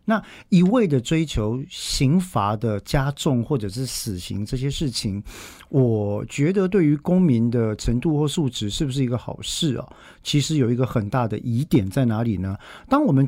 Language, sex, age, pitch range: Chinese, male, 50-69, 110-150 Hz